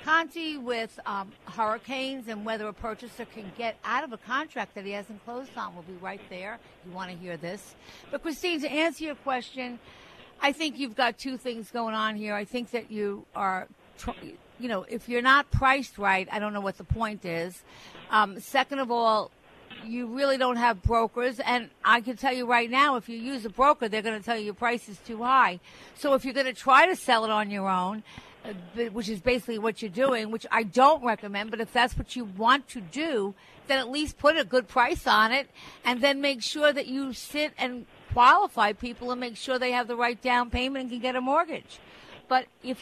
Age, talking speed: 60-79, 225 wpm